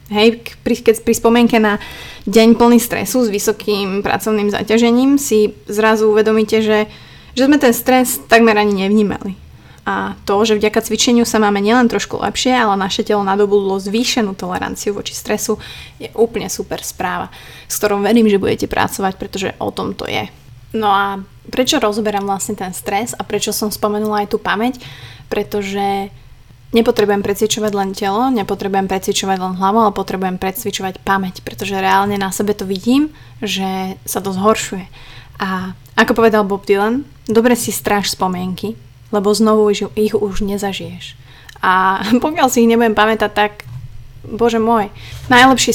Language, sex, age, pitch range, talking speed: Slovak, female, 20-39, 195-225 Hz, 150 wpm